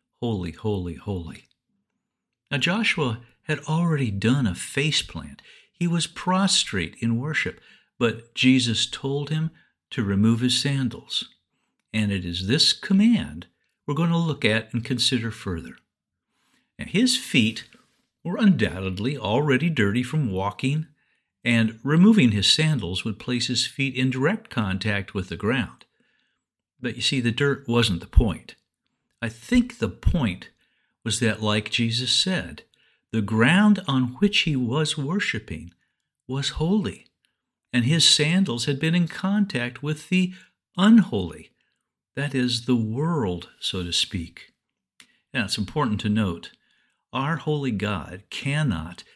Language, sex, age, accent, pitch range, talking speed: English, male, 60-79, American, 110-155 Hz, 135 wpm